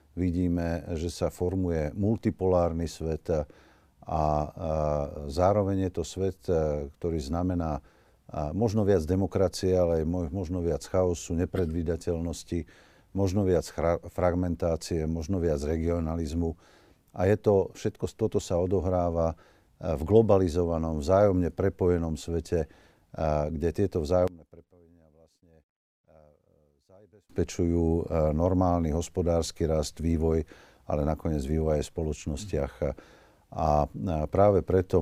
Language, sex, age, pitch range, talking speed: Slovak, male, 50-69, 80-90 Hz, 100 wpm